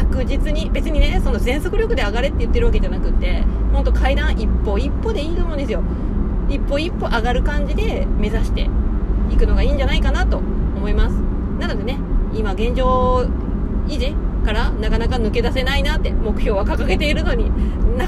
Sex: female